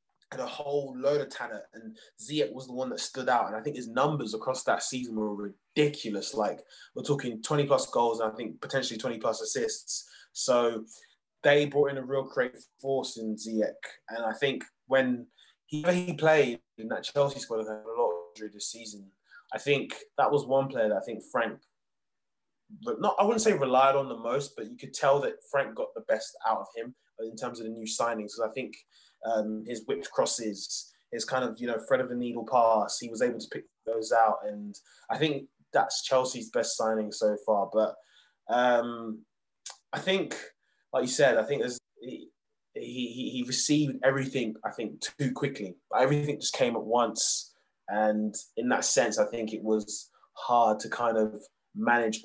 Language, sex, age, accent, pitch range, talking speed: English, male, 20-39, British, 110-145 Hz, 195 wpm